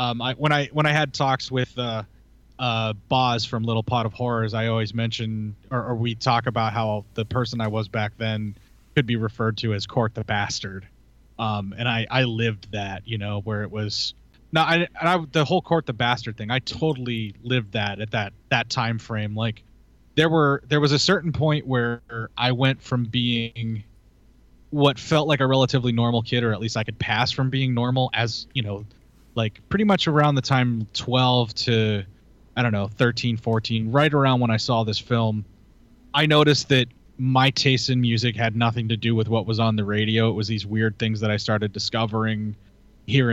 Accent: American